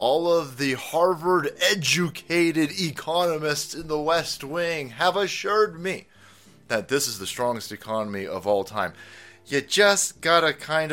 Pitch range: 120-160 Hz